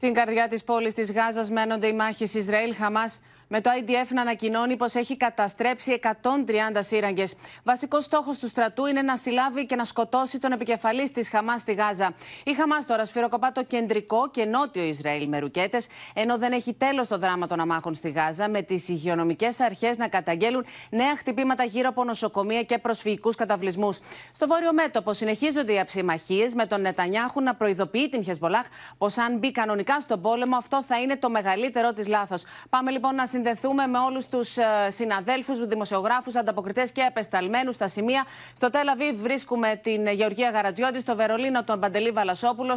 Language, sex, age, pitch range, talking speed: Greek, female, 30-49, 210-250 Hz, 175 wpm